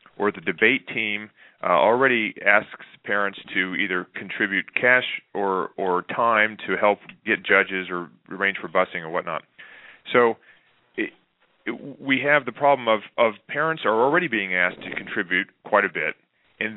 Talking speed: 160 wpm